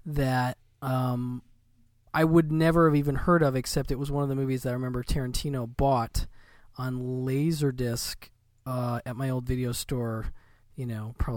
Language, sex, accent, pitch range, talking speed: English, male, American, 120-145 Hz, 170 wpm